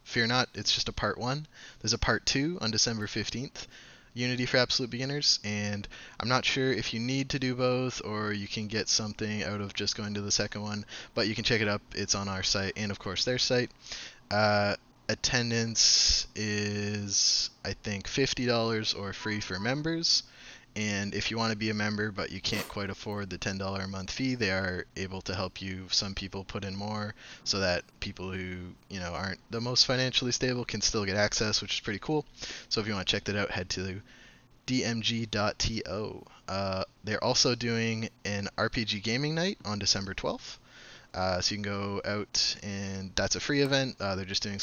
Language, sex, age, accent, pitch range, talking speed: English, male, 20-39, American, 100-120 Hz, 205 wpm